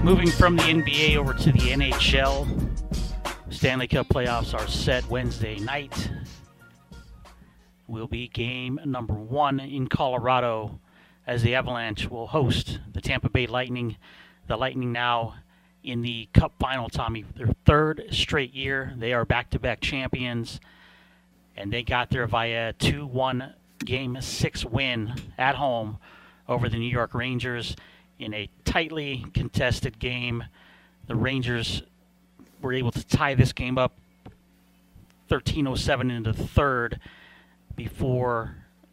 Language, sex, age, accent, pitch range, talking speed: English, male, 40-59, American, 110-130 Hz, 130 wpm